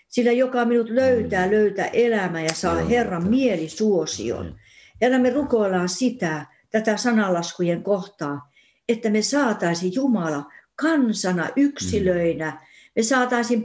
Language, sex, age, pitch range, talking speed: Finnish, female, 60-79, 180-250 Hz, 110 wpm